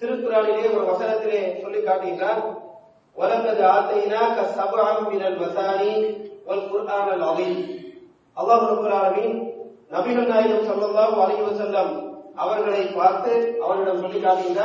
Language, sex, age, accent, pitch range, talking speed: English, male, 40-59, Indian, 205-255 Hz, 70 wpm